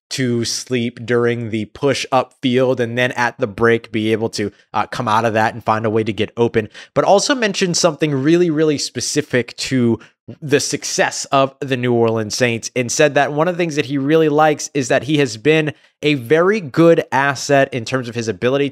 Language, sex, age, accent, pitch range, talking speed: English, male, 20-39, American, 115-150 Hz, 215 wpm